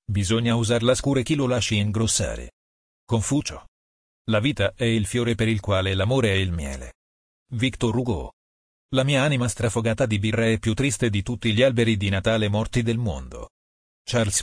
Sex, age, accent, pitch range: male, 40-59, native, 95-120 Hz